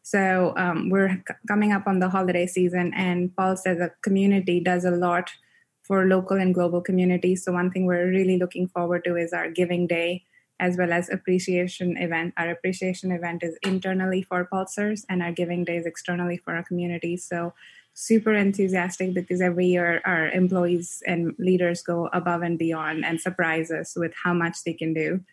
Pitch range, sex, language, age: 170-185 Hz, female, English, 20-39